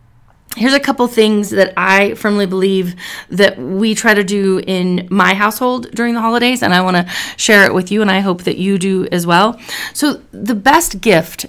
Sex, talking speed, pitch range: female, 205 wpm, 185-215 Hz